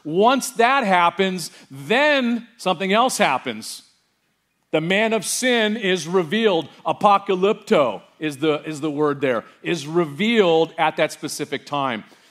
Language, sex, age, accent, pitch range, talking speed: English, male, 40-59, American, 135-180 Hz, 125 wpm